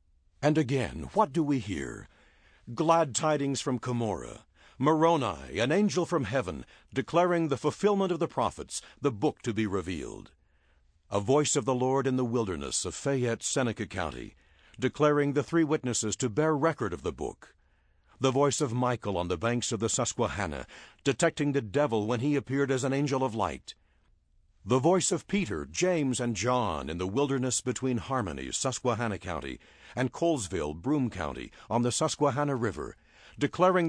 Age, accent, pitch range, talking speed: 60-79, American, 100-145 Hz, 165 wpm